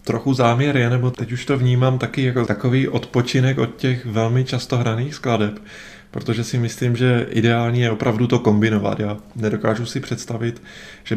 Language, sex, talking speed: Czech, male, 170 wpm